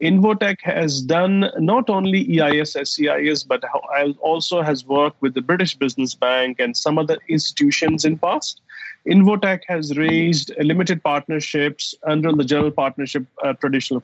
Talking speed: 145 wpm